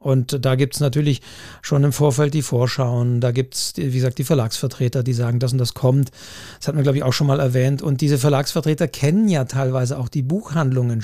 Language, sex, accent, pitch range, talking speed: German, male, German, 130-165 Hz, 225 wpm